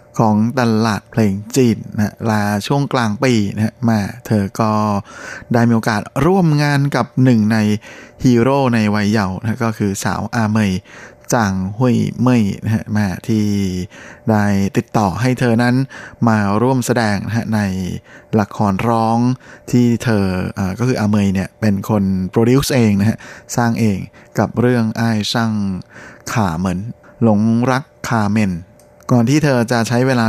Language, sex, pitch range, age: Thai, male, 105-120 Hz, 20-39